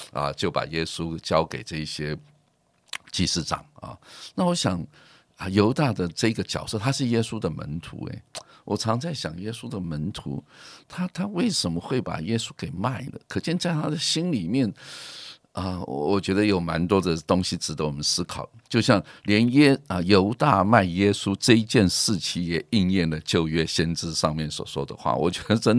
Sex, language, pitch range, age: male, Chinese, 80-105 Hz, 50-69